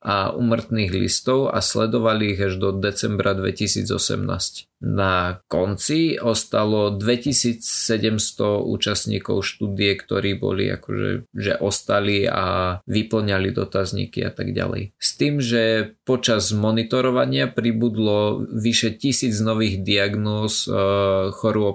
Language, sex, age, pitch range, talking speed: Slovak, male, 20-39, 100-115 Hz, 105 wpm